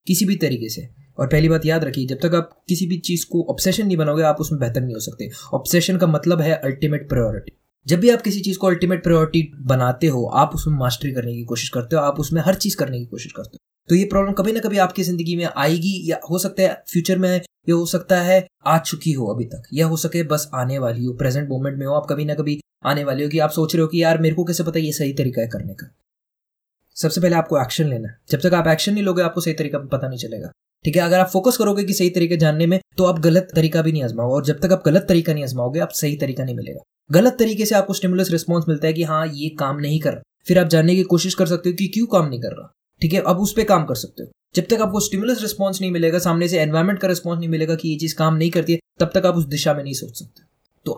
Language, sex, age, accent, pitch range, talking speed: Hindi, male, 20-39, native, 145-180 Hz, 265 wpm